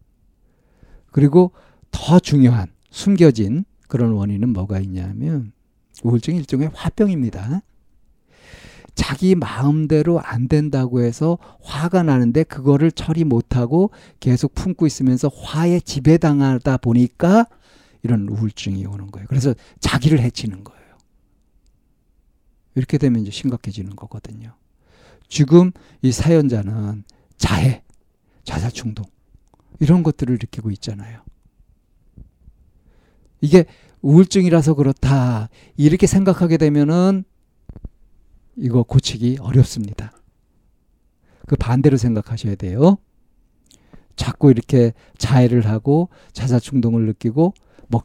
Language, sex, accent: Korean, male, native